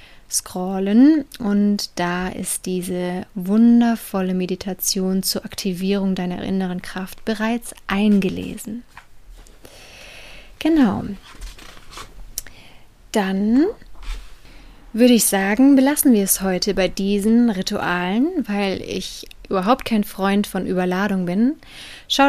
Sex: female